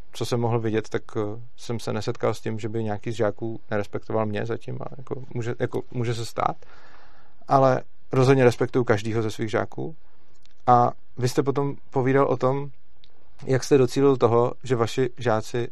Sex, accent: male, native